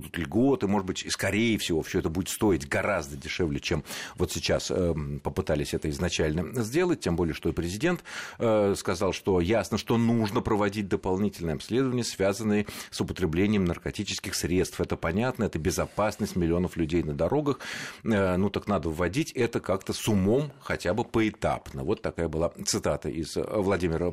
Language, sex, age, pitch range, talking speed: Russian, male, 40-59, 85-115 Hz, 155 wpm